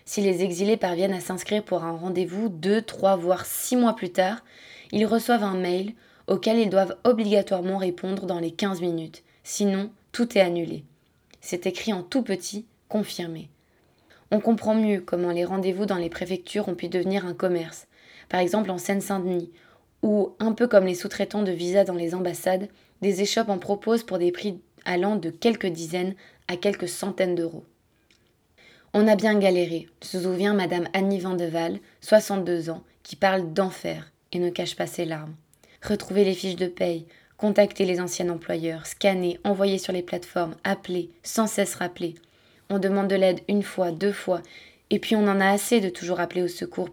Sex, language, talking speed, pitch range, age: female, French, 180 wpm, 175-200 Hz, 20-39